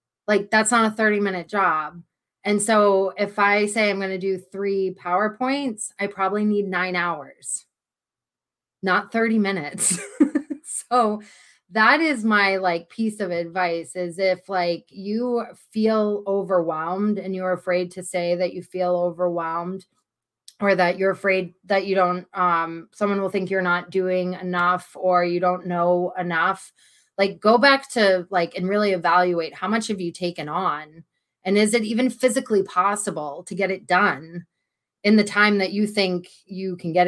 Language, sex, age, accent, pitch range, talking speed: English, female, 20-39, American, 180-210 Hz, 160 wpm